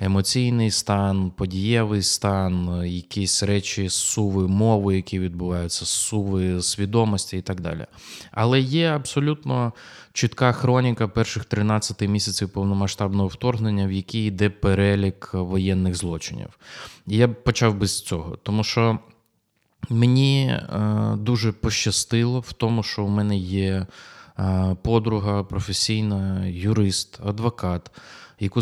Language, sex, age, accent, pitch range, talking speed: Ukrainian, male, 20-39, native, 95-115 Hz, 110 wpm